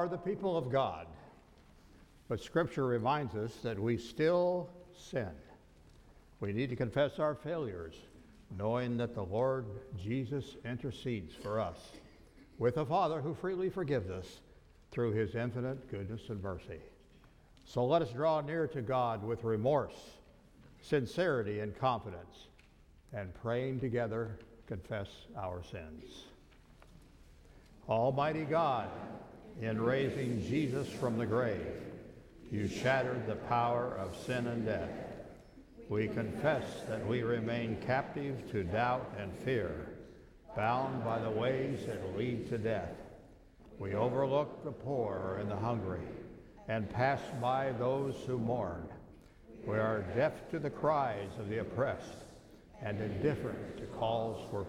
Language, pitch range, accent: English, 105-135 Hz, American